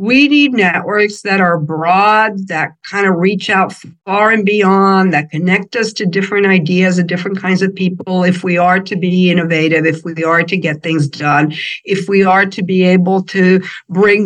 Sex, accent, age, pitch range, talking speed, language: female, American, 60-79, 170-215 Hz, 195 wpm, English